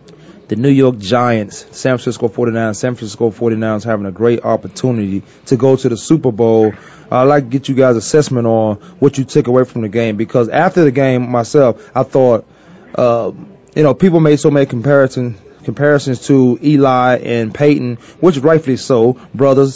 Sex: male